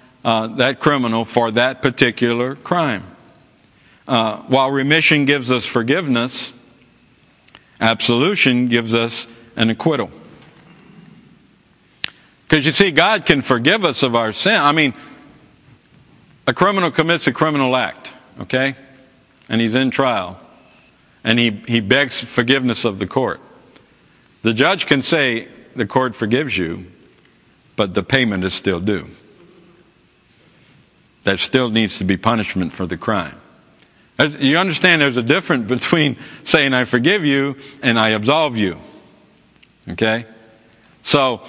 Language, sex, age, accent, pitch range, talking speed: English, male, 50-69, American, 115-140 Hz, 130 wpm